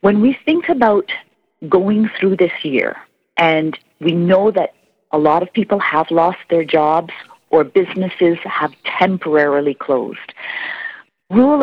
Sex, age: female, 40-59